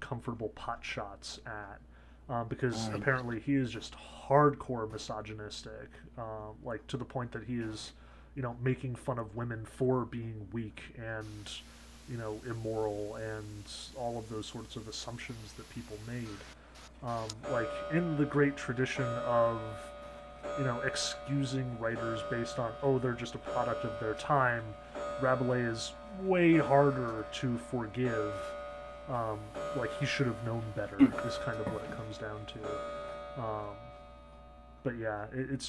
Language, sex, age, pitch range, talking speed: English, male, 20-39, 105-125 Hz, 150 wpm